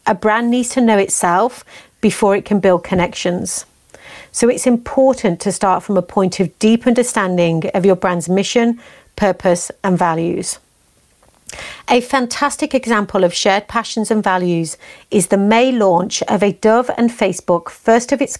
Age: 40-59